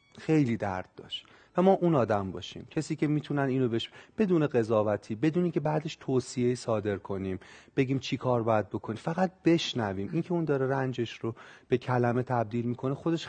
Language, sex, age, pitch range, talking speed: Persian, male, 30-49, 110-155 Hz, 175 wpm